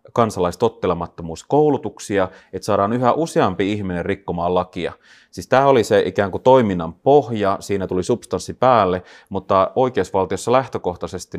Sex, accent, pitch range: male, native, 85-105 Hz